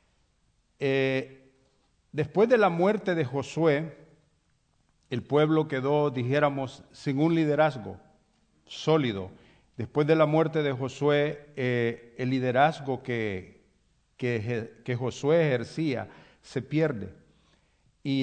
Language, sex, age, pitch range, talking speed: English, male, 50-69, 125-155 Hz, 105 wpm